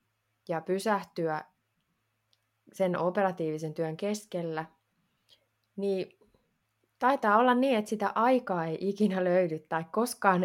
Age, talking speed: 20-39, 105 wpm